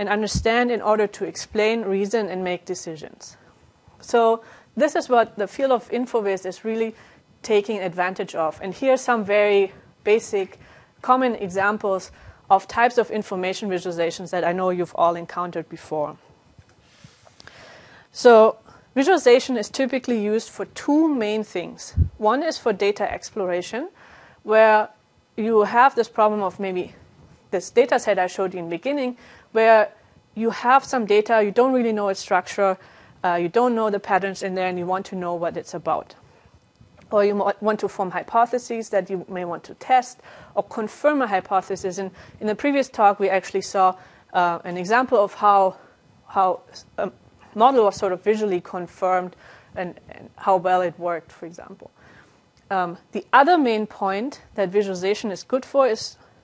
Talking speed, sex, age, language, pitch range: 165 wpm, female, 30-49, French, 185-235 Hz